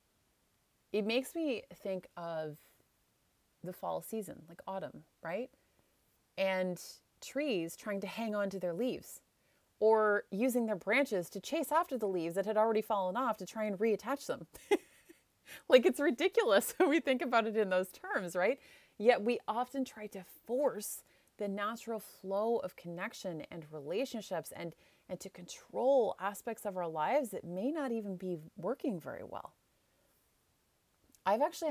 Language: English